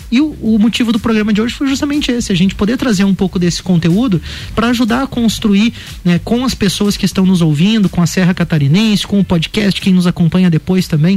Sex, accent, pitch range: male, Brazilian, 180-225 Hz